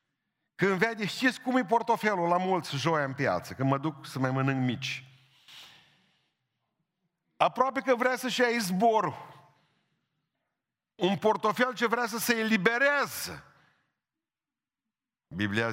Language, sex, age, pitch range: Romanian, male, 50-69, 130-195 Hz